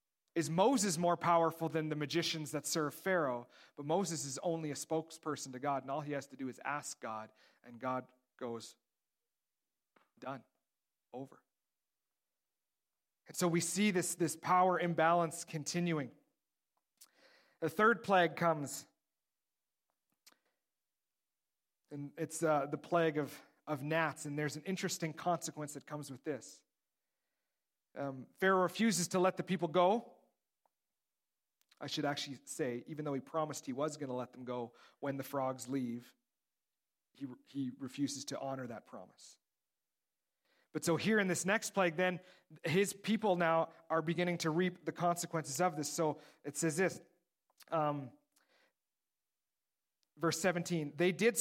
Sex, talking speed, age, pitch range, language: male, 145 wpm, 40-59, 145-180 Hz, English